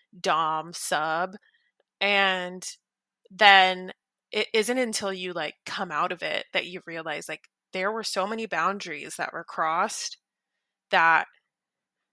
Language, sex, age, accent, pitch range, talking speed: English, female, 20-39, American, 175-215 Hz, 130 wpm